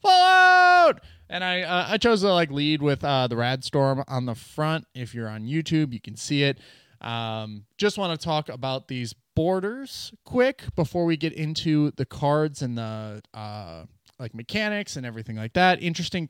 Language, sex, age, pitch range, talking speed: English, male, 20-39, 115-165 Hz, 180 wpm